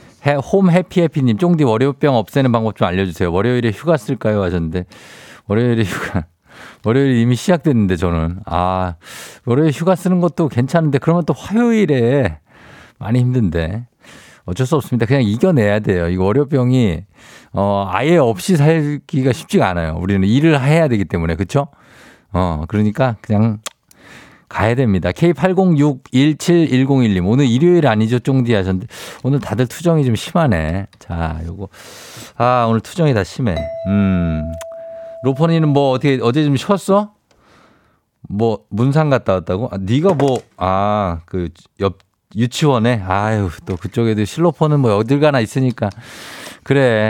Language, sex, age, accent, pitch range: Korean, male, 50-69, native, 100-145 Hz